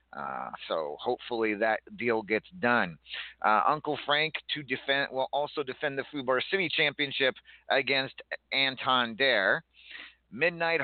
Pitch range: 125-150 Hz